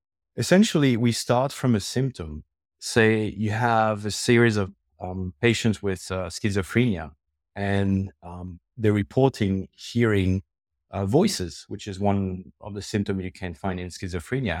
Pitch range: 90-110 Hz